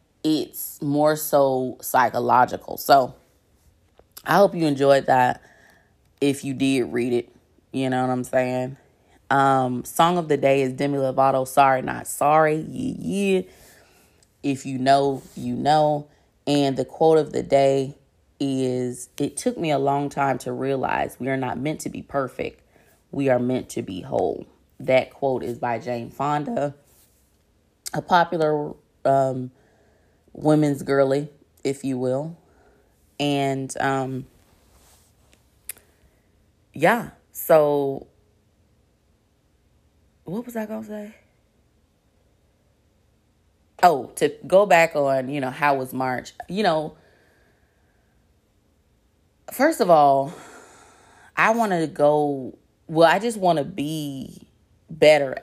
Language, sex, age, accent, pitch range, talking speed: English, female, 20-39, American, 125-150 Hz, 125 wpm